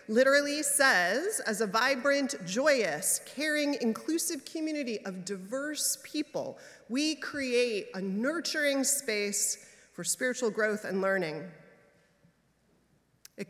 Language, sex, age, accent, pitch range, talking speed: English, female, 30-49, American, 190-250 Hz, 100 wpm